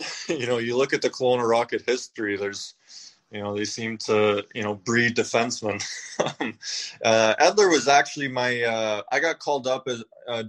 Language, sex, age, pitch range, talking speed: English, male, 20-39, 105-120 Hz, 175 wpm